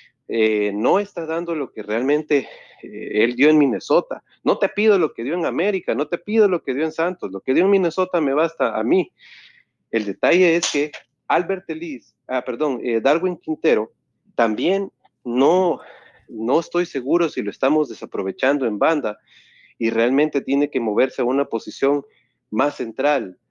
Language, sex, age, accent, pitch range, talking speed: Spanish, male, 40-59, Mexican, 115-160 Hz, 175 wpm